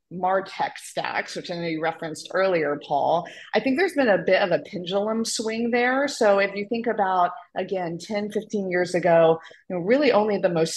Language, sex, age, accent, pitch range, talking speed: English, female, 30-49, American, 175-210 Hz, 200 wpm